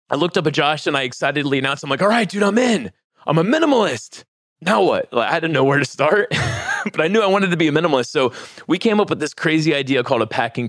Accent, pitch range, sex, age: American, 110-140 Hz, male, 20-39